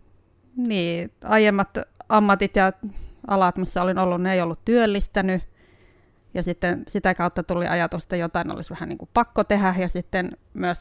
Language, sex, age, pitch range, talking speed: Finnish, female, 30-49, 165-200 Hz, 160 wpm